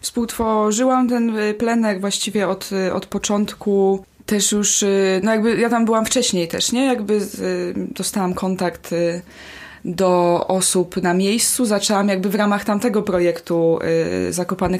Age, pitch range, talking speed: 20-39, 180-230 Hz, 130 wpm